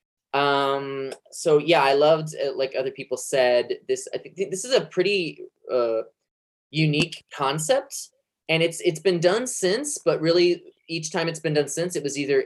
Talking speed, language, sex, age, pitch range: 175 wpm, English, male, 20-39, 130-200 Hz